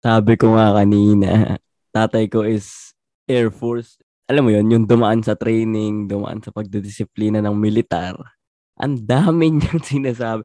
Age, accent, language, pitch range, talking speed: 20-39, native, Filipino, 105-120 Hz, 145 wpm